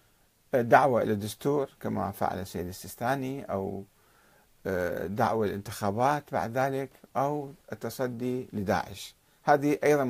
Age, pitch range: 50-69, 115-170 Hz